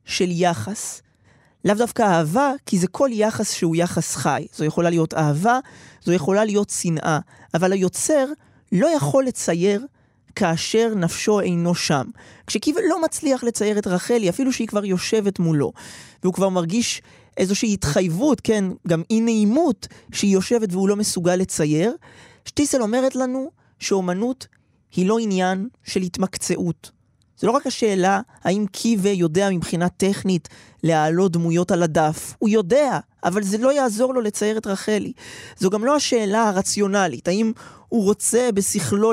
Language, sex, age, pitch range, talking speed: Hebrew, male, 20-39, 175-225 Hz, 145 wpm